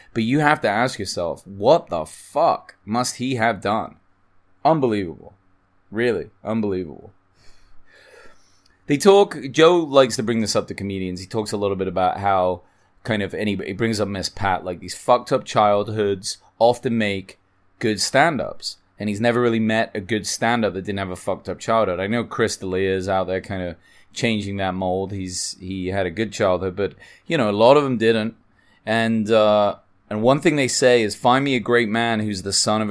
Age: 20-39